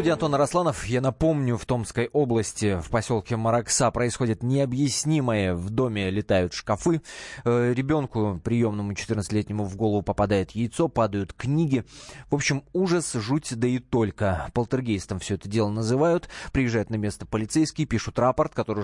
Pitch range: 105-145 Hz